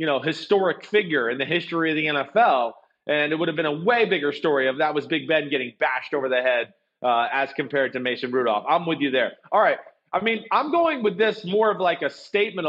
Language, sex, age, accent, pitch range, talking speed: English, male, 30-49, American, 155-205 Hz, 245 wpm